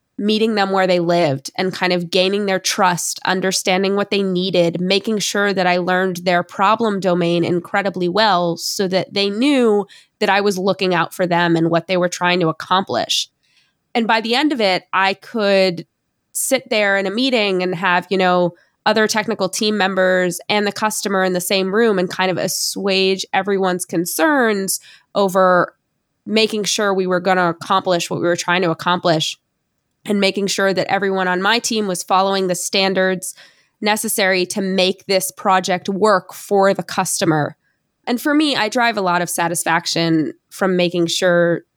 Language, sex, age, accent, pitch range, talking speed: English, female, 20-39, American, 180-205 Hz, 180 wpm